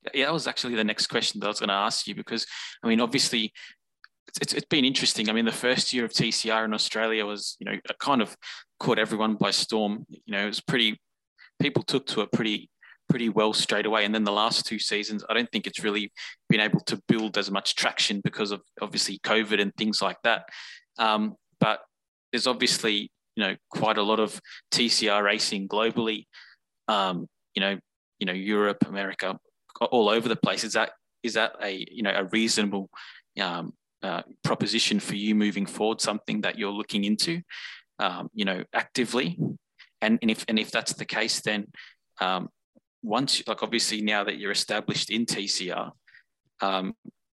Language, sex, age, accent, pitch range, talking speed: English, male, 20-39, Australian, 105-115 Hz, 190 wpm